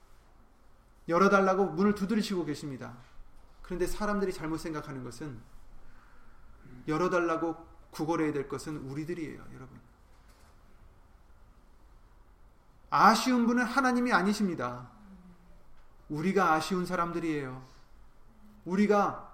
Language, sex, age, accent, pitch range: Korean, male, 30-49, native, 150-215 Hz